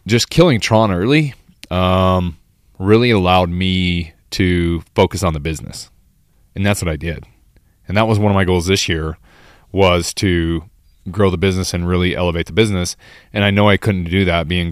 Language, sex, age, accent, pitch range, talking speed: English, male, 20-39, American, 85-100 Hz, 185 wpm